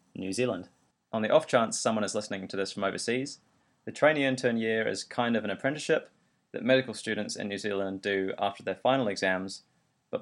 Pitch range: 100-125 Hz